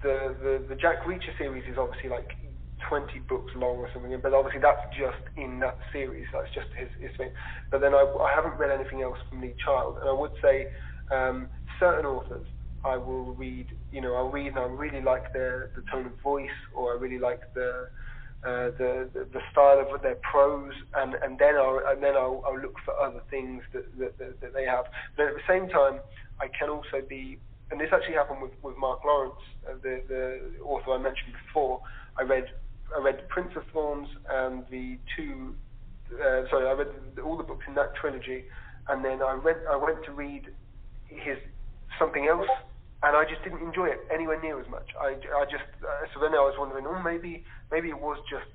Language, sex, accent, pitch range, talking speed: English, male, British, 125-145 Hz, 215 wpm